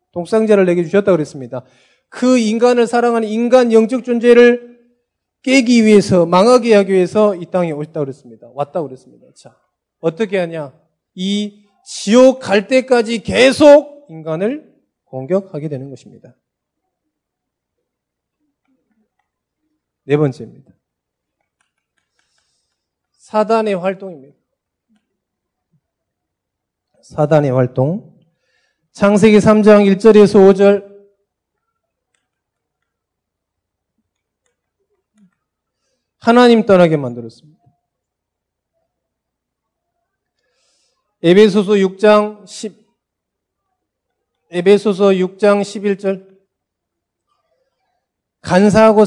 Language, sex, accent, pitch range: Korean, male, native, 175-220 Hz